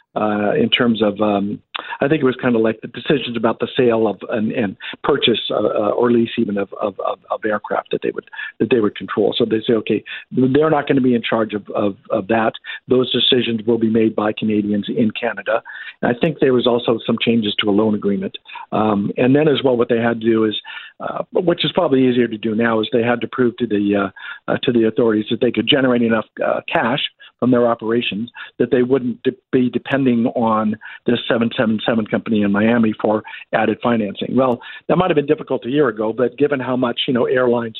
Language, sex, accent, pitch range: English, male, American, 110-125 Hz